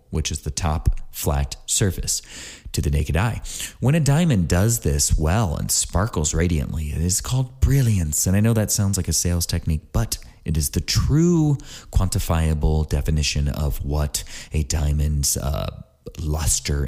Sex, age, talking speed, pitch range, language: male, 30-49, 160 wpm, 75-95 Hz, English